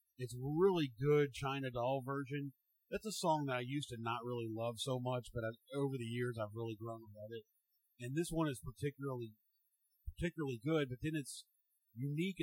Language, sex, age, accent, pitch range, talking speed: English, male, 40-59, American, 125-155 Hz, 190 wpm